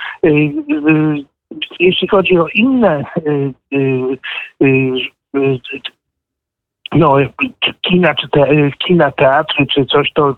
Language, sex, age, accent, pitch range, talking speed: Polish, male, 50-69, native, 135-170 Hz, 75 wpm